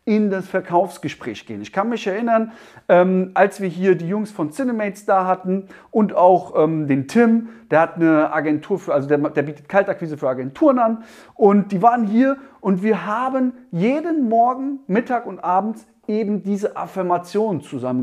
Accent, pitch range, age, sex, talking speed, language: German, 155-215 Hz, 40-59, male, 165 wpm, German